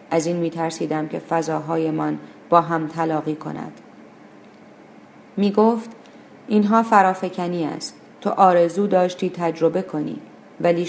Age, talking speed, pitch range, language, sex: 40-59, 110 wpm, 160-180 Hz, Persian, female